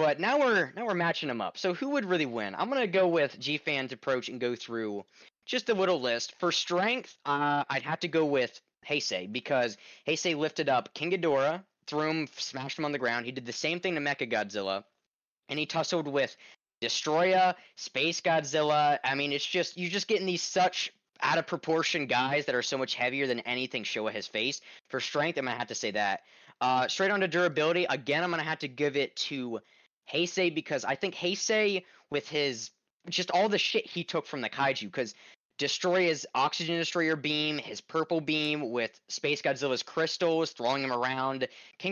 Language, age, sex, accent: English, 20-39, male, American